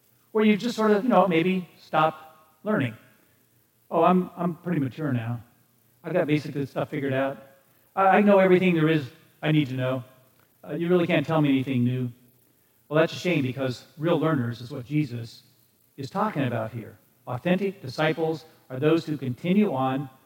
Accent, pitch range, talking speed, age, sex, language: American, 130-180 Hz, 180 wpm, 50-69, male, English